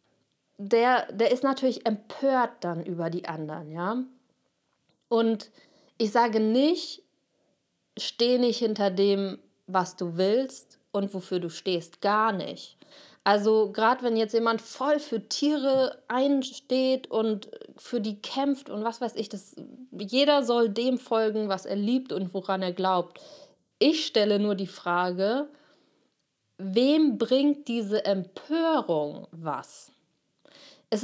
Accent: German